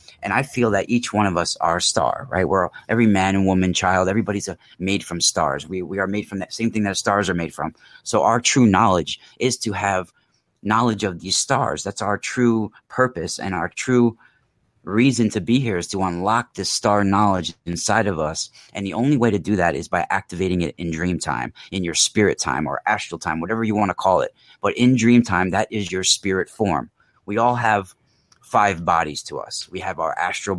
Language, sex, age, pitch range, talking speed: English, male, 30-49, 90-110 Hz, 220 wpm